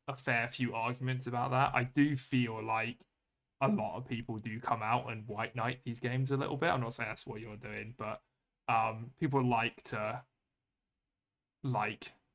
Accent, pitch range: British, 110-130 Hz